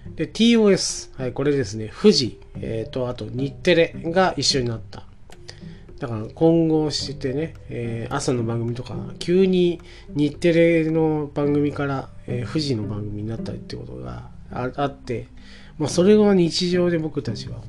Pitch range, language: 110-155 Hz, Japanese